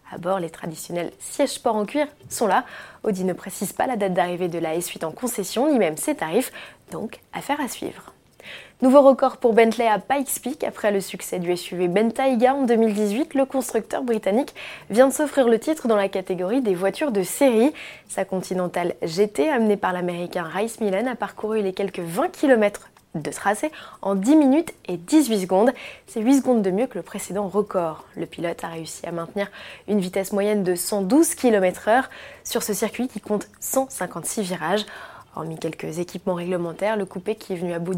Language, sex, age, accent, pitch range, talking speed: French, female, 20-39, French, 185-250 Hz, 190 wpm